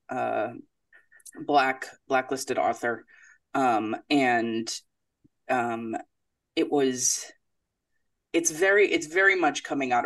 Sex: female